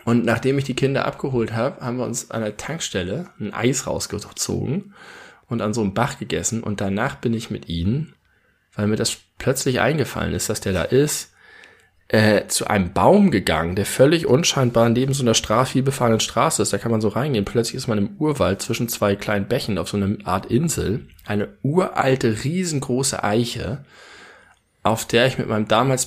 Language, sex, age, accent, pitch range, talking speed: German, male, 20-39, German, 105-130 Hz, 185 wpm